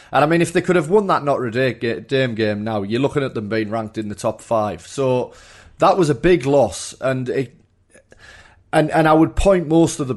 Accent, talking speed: British, 230 wpm